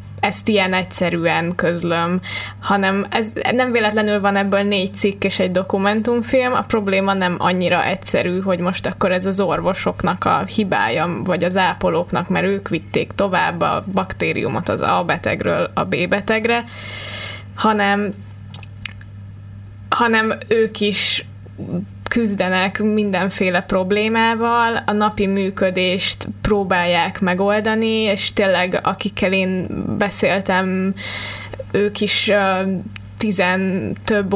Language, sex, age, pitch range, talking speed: Hungarian, female, 10-29, 175-200 Hz, 110 wpm